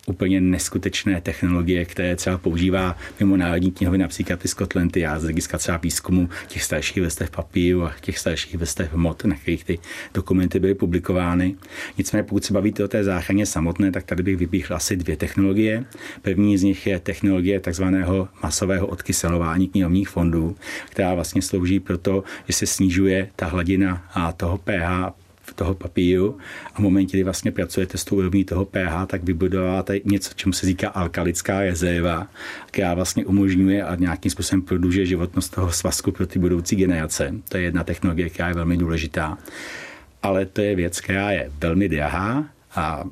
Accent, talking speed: native, 170 wpm